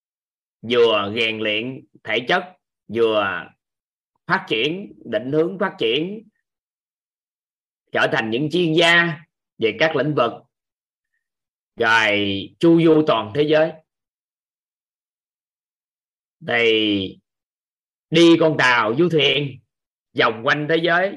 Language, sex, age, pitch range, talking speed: Vietnamese, male, 20-39, 125-170 Hz, 105 wpm